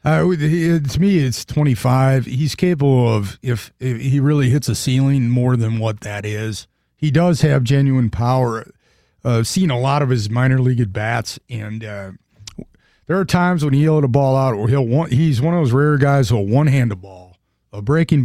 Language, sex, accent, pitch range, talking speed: English, male, American, 115-150 Hz, 205 wpm